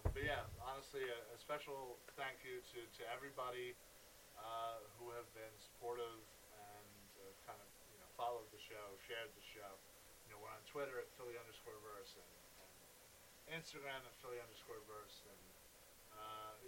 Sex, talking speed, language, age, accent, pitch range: male, 160 wpm, English, 20-39, American, 115-140 Hz